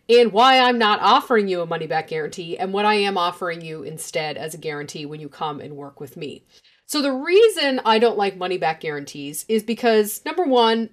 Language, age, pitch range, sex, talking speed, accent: English, 40-59, 180-260 Hz, female, 210 wpm, American